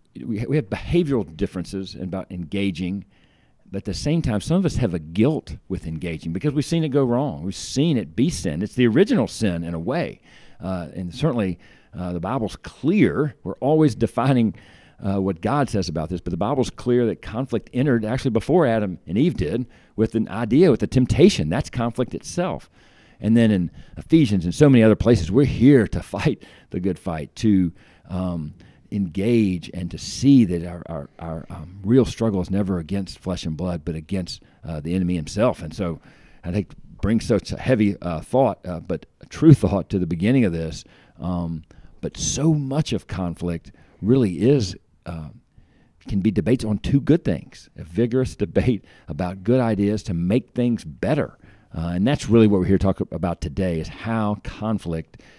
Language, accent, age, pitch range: English, American, 50-69, 90-120 Hz